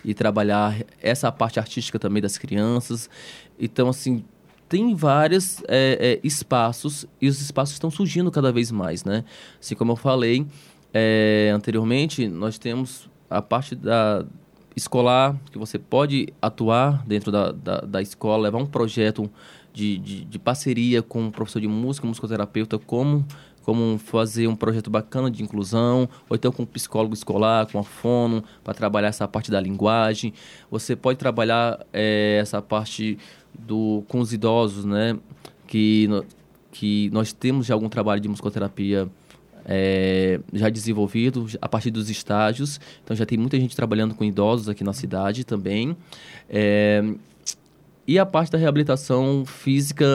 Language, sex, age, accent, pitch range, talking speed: Portuguese, male, 20-39, Brazilian, 105-130 Hz, 145 wpm